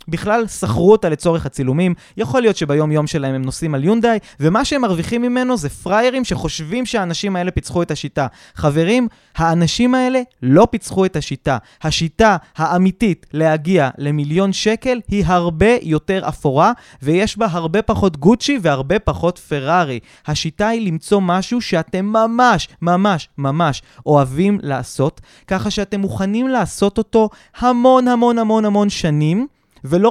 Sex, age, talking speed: male, 20-39, 140 wpm